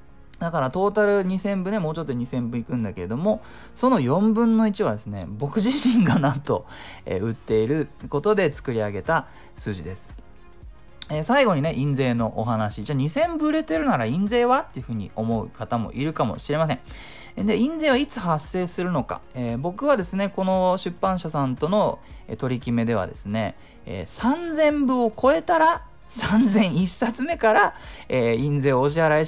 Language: Japanese